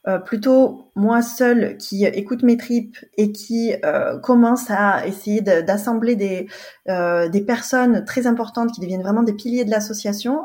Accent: French